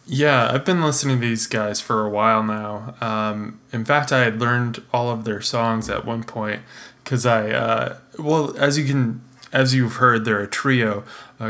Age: 20-39